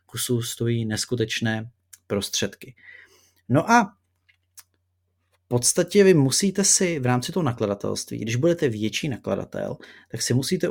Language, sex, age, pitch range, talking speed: Czech, male, 30-49, 110-135 Hz, 125 wpm